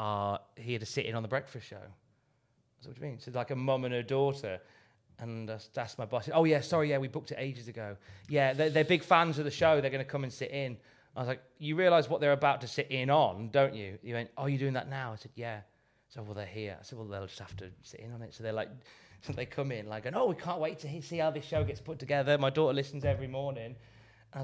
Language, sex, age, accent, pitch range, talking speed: English, male, 30-49, British, 130-210 Hz, 295 wpm